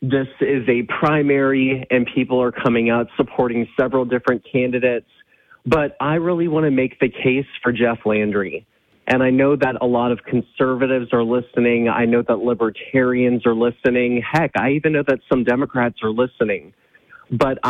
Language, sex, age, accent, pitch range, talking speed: English, male, 30-49, American, 115-135 Hz, 170 wpm